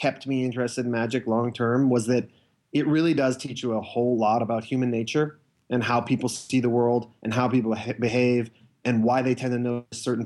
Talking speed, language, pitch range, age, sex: 210 wpm, English, 120-155 Hz, 30-49, male